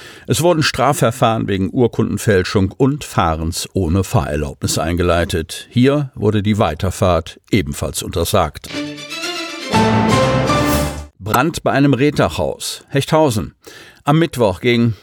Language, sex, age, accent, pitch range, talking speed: German, male, 50-69, German, 100-125 Hz, 95 wpm